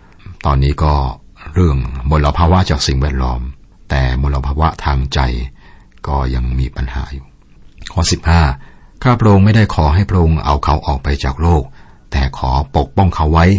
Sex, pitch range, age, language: male, 65-85 Hz, 60-79, Thai